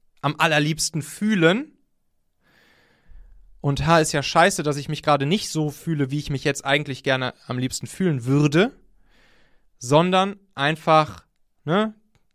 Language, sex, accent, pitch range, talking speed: German, male, German, 125-160 Hz, 135 wpm